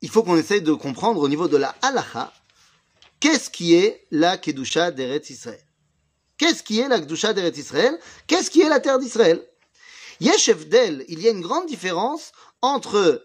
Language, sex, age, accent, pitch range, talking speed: French, male, 30-49, French, 170-245 Hz, 180 wpm